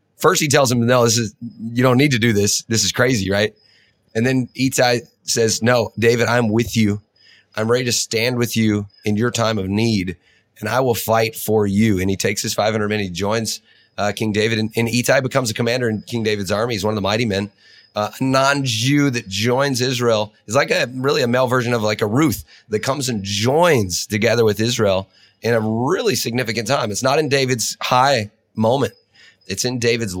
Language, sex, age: English, male, 30-49